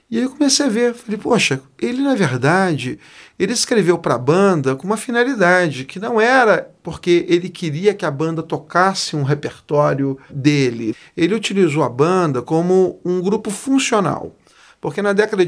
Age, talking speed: 40-59, 165 wpm